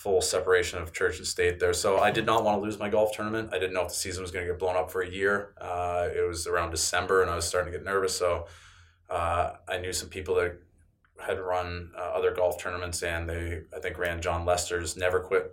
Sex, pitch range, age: male, 85-90 Hz, 20-39